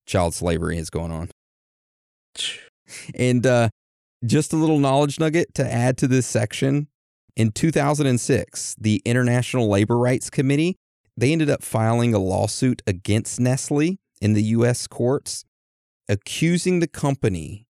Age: 30-49